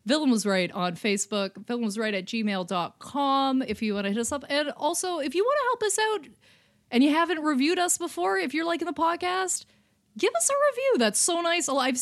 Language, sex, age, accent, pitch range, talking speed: English, female, 30-49, American, 195-275 Hz, 225 wpm